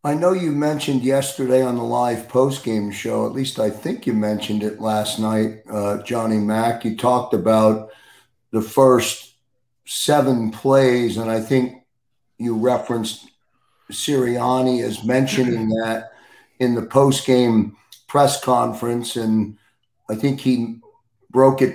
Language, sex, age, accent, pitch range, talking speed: English, male, 50-69, American, 115-135 Hz, 135 wpm